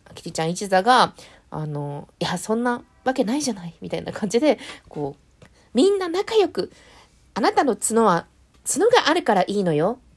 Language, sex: Japanese, female